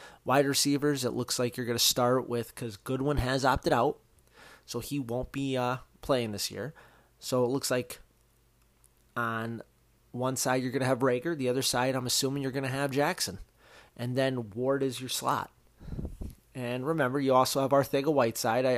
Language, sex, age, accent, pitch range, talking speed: English, male, 30-49, American, 115-135 Hz, 185 wpm